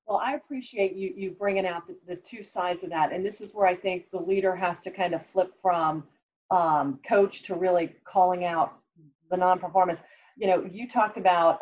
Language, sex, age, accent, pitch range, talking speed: English, female, 40-59, American, 180-220 Hz, 205 wpm